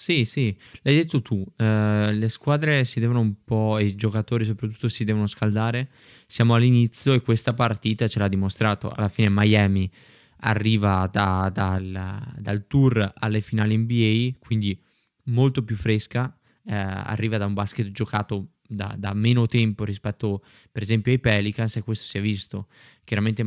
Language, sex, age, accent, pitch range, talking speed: Italian, male, 20-39, native, 100-120 Hz, 155 wpm